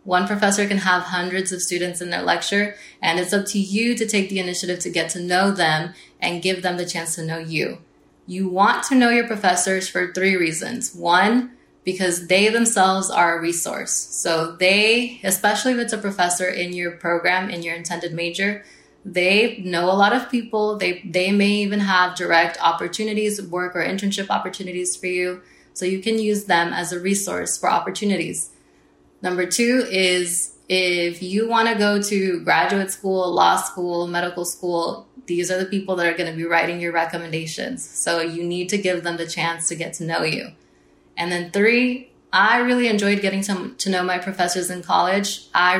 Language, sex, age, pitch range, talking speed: English, female, 20-39, 175-200 Hz, 190 wpm